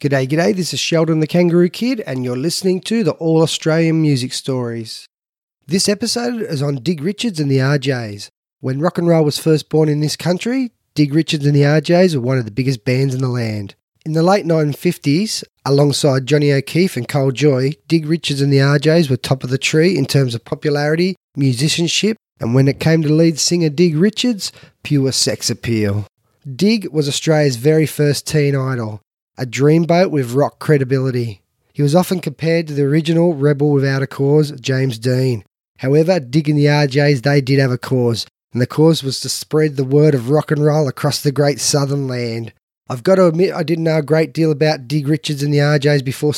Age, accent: 20-39, Australian